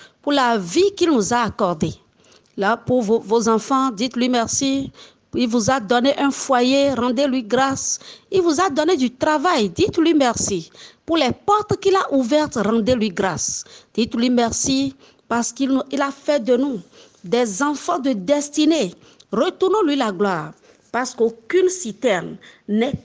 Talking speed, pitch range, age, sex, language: 150 wpm, 230-290 Hz, 40-59, female, French